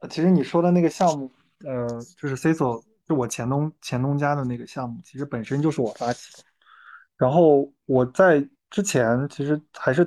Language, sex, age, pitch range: Chinese, male, 20-39, 115-140 Hz